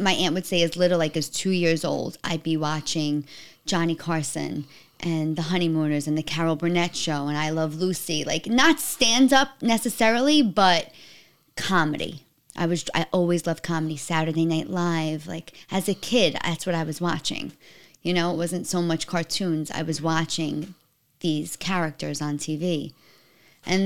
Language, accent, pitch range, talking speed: English, American, 160-185 Hz, 175 wpm